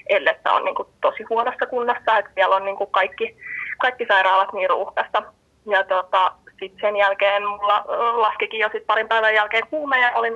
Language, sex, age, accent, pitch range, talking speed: Finnish, female, 20-39, native, 205-240 Hz, 180 wpm